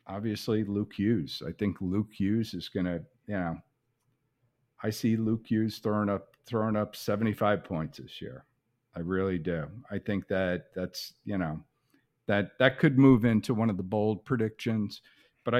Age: 50-69